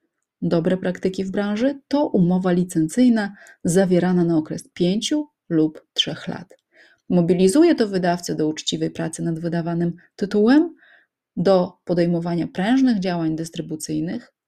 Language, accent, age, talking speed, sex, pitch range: Polish, native, 30-49, 115 wpm, female, 170-240 Hz